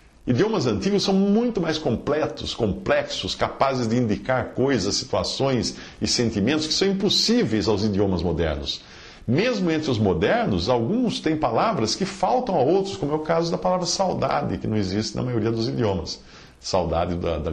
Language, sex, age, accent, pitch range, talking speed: English, male, 50-69, Brazilian, 90-145 Hz, 165 wpm